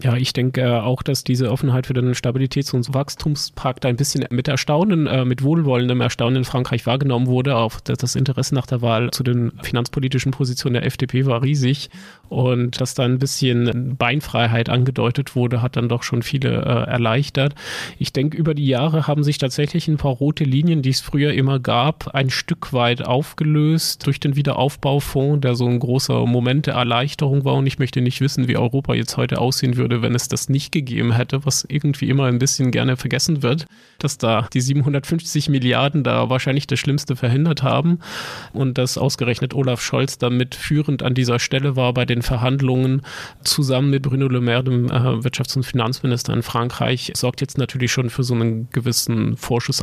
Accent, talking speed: German, 185 wpm